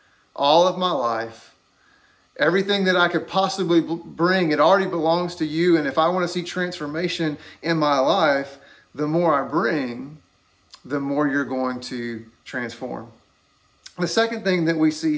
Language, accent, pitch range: English, American, 155-190 Hz